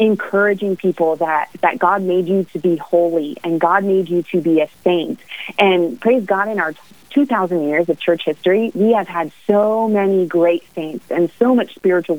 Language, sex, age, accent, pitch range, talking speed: English, female, 30-49, American, 165-205 Hz, 190 wpm